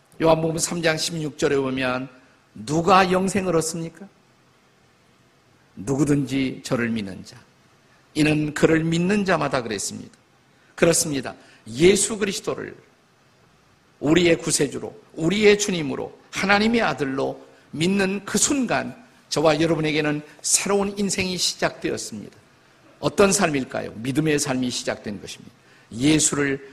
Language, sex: Korean, male